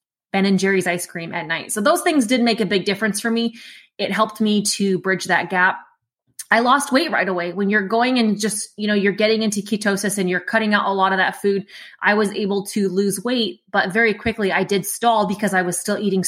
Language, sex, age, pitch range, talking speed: English, female, 20-39, 190-225 Hz, 245 wpm